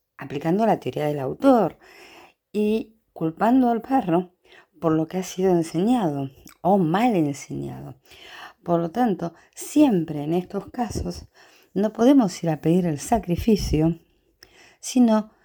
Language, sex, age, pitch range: Spanish, female, 50-69, 155-215 Hz